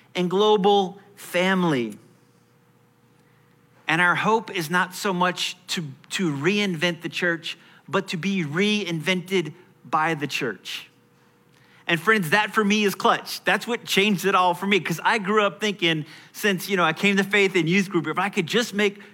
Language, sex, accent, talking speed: English, male, American, 175 wpm